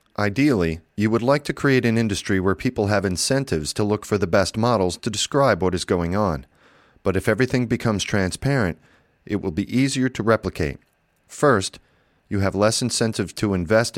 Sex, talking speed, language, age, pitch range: male, 180 wpm, English, 40-59, 90-120 Hz